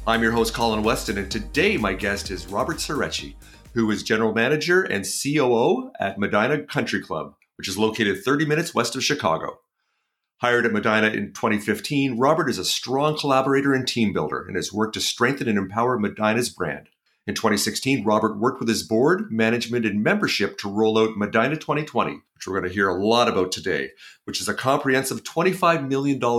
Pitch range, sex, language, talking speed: 100-130 Hz, male, English, 185 wpm